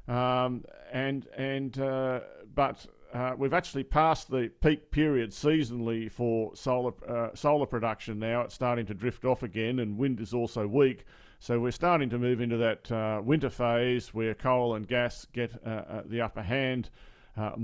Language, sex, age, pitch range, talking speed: English, male, 50-69, 110-130 Hz, 170 wpm